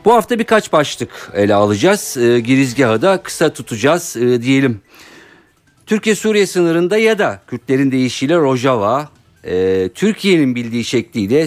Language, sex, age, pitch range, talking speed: Turkish, male, 50-69, 110-150 Hz, 125 wpm